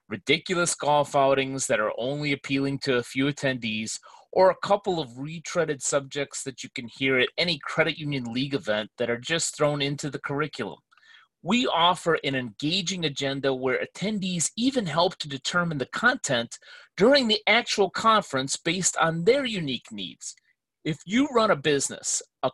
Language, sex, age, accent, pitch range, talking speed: English, male, 30-49, American, 135-185 Hz, 165 wpm